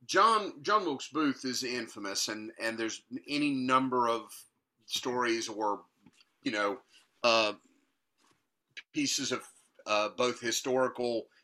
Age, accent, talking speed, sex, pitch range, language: 40-59, American, 115 wpm, male, 110-145 Hz, English